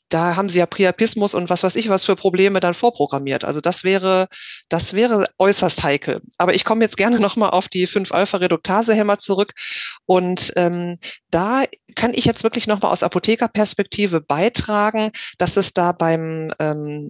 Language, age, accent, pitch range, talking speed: German, 40-59, German, 175-215 Hz, 165 wpm